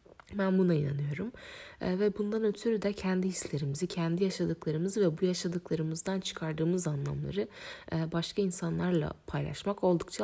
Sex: female